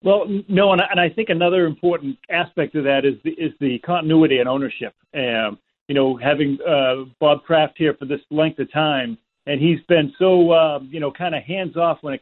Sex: male